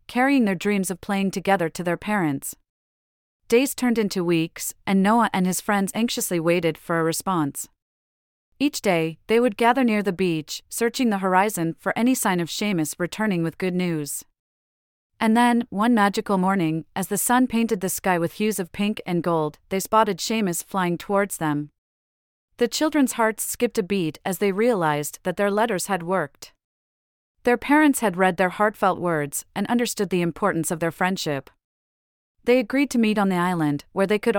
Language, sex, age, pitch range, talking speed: English, female, 30-49, 160-220 Hz, 180 wpm